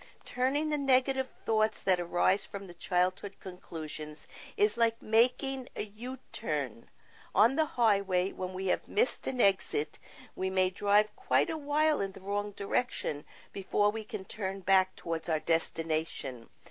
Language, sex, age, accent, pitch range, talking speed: English, female, 50-69, American, 175-220 Hz, 150 wpm